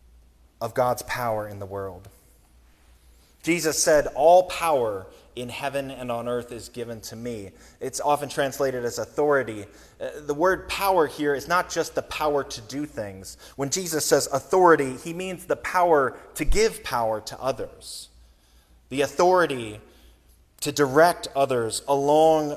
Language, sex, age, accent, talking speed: English, male, 20-39, American, 145 wpm